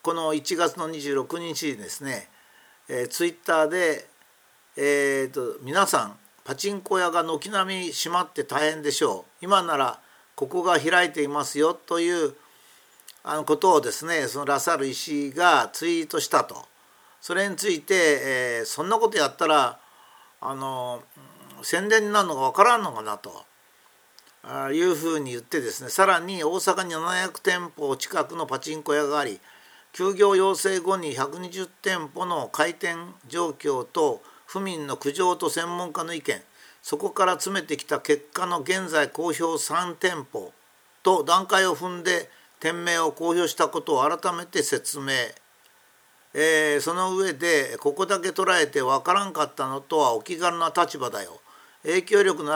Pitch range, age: 150-195 Hz, 50-69